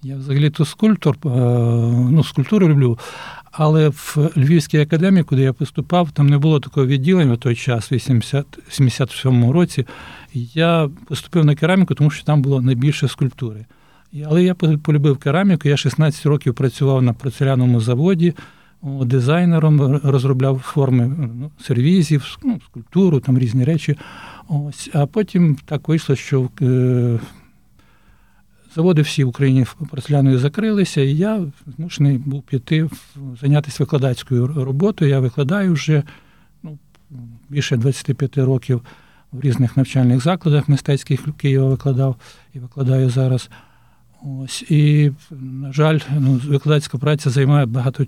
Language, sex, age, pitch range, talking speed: Polish, male, 60-79, 130-155 Hz, 130 wpm